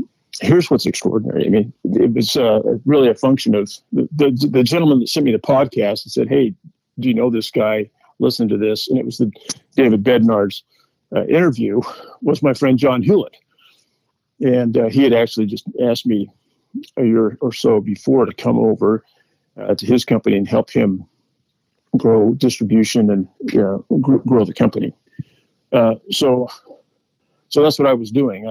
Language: English